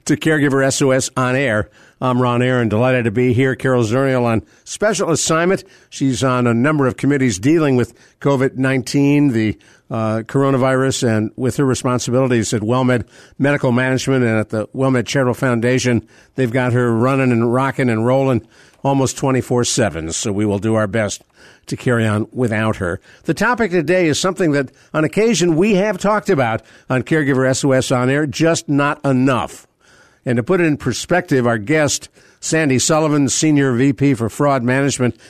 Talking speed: 170 wpm